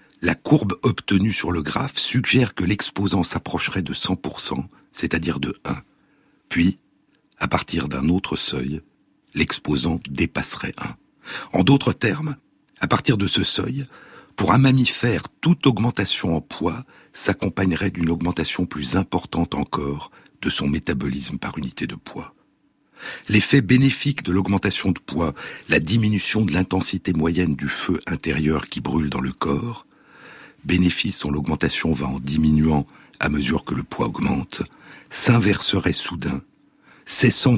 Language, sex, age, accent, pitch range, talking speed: French, male, 60-79, French, 80-105 Hz, 135 wpm